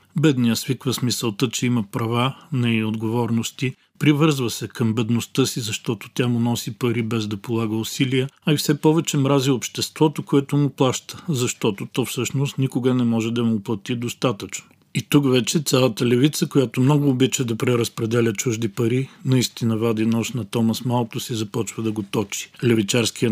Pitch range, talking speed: 115-130 Hz, 170 wpm